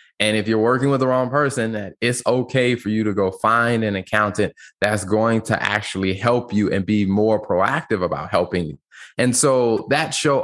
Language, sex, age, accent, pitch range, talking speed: English, male, 20-39, American, 105-125 Hz, 200 wpm